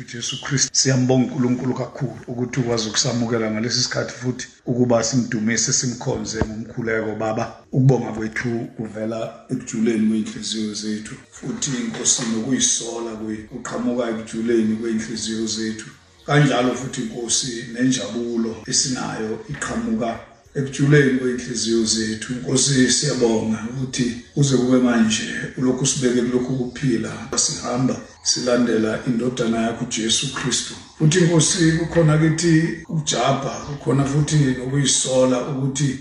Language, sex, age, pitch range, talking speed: English, male, 50-69, 115-140 Hz, 110 wpm